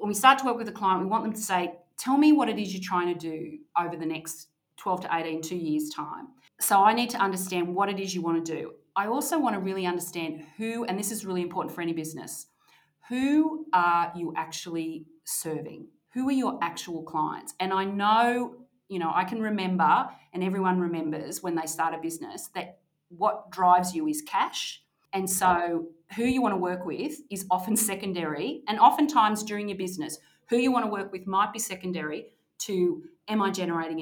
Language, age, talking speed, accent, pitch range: English, 30-49, 210 wpm, Australian, 165-210 Hz